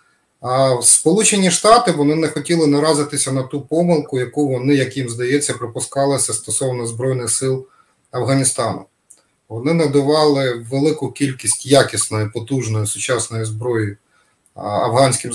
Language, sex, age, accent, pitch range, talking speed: Ukrainian, male, 30-49, native, 125-150 Hz, 115 wpm